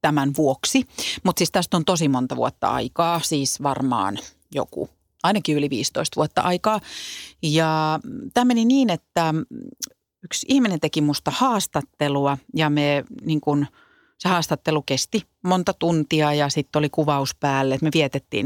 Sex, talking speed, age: female, 145 wpm, 30-49